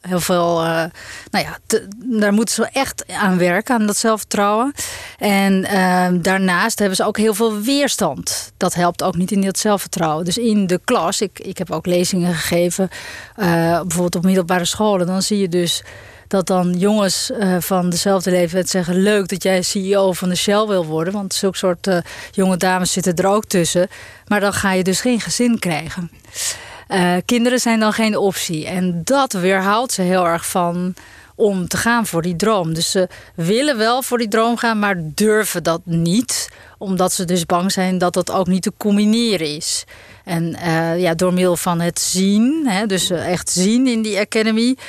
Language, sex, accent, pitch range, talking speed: Dutch, female, Dutch, 175-210 Hz, 190 wpm